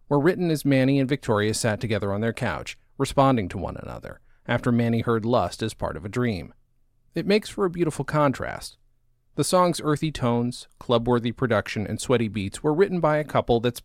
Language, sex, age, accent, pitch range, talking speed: English, male, 40-59, American, 110-135 Hz, 195 wpm